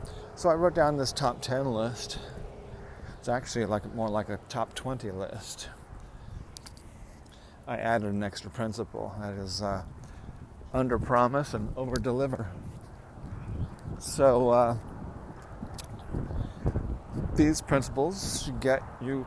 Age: 50-69